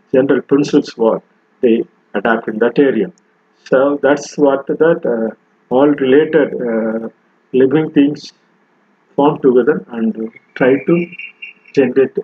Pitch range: 120-155 Hz